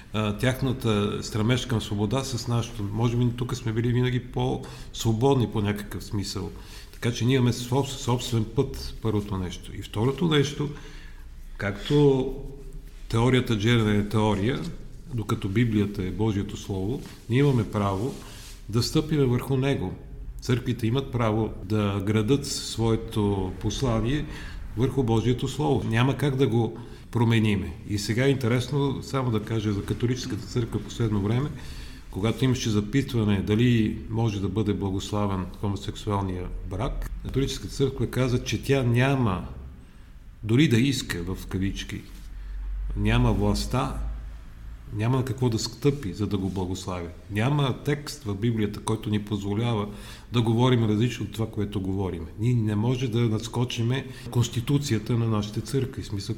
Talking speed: 140 wpm